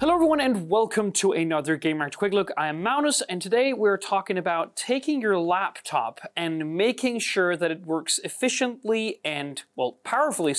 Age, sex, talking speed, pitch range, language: 30-49, male, 170 wpm, 150-210 Hz, Italian